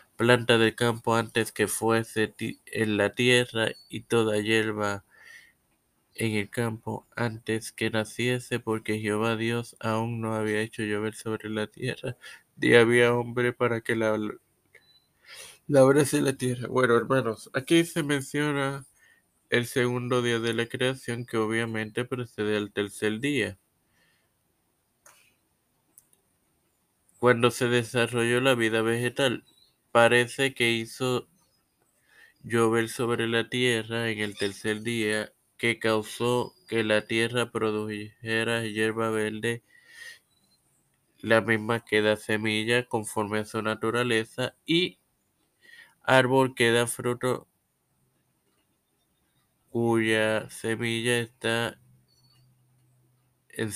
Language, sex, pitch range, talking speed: Spanish, male, 110-125 Hz, 110 wpm